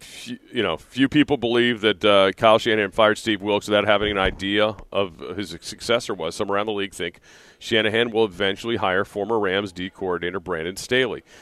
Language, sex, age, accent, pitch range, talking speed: English, male, 40-59, American, 95-110 Hz, 190 wpm